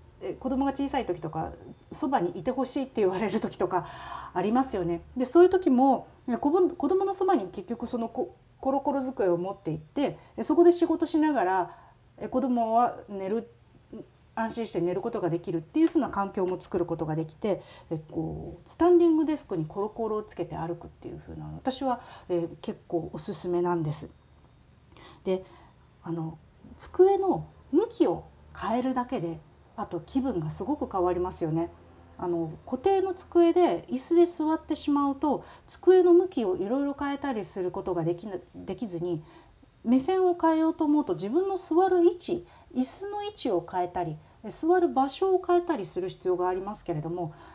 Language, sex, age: Japanese, female, 40-59